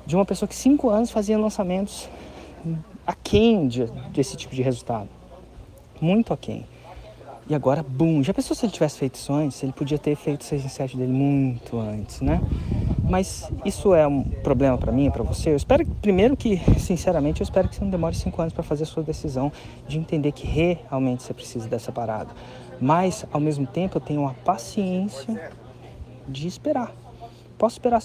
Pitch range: 120-170 Hz